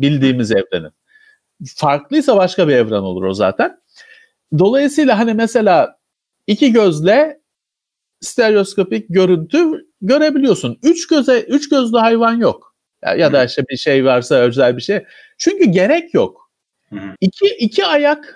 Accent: native